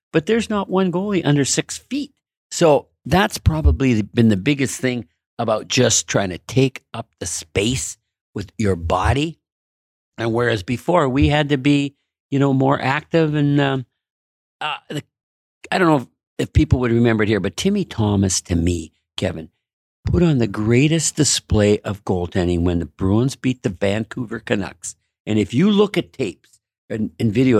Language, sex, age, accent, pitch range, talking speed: English, male, 60-79, American, 100-160 Hz, 170 wpm